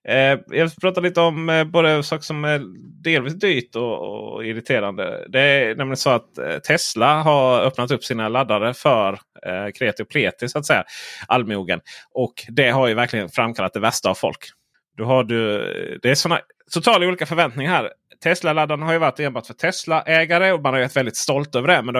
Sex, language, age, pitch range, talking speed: male, Swedish, 30-49, 110-145 Hz, 205 wpm